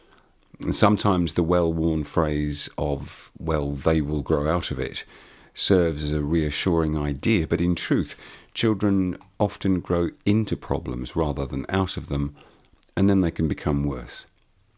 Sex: male